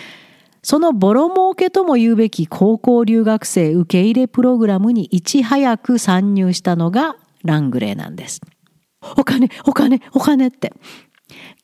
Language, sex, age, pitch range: Japanese, female, 50-69, 170-255 Hz